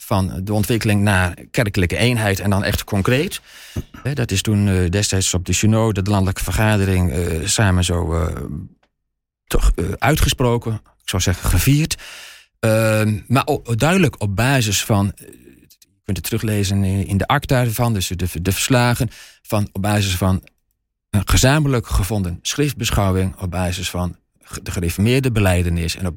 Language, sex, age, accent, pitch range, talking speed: Dutch, male, 40-59, Dutch, 90-115 Hz, 135 wpm